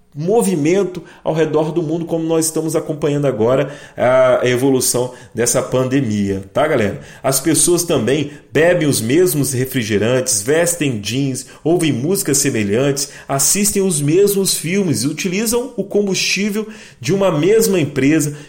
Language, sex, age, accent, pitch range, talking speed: Portuguese, male, 40-59, Brazilian, 130-175 Hz, 130 wpm